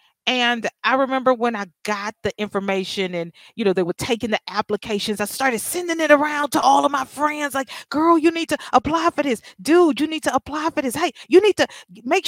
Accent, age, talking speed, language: American, 40-59, 225 wpm, English